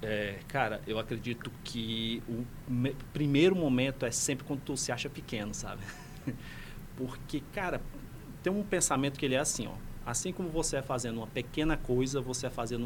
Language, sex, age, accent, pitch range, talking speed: Portuguese, male, 40-59, Brazilian, 125-160 Hz, 175 wpm